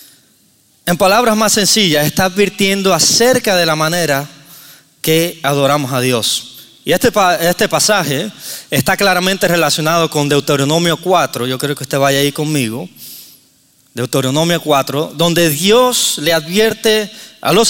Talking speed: 130 wpm